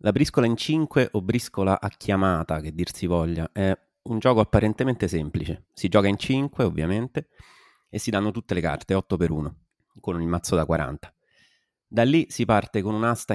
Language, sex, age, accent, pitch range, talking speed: Italian, male, 30-49, native, 85-110 Hz, 190 wpm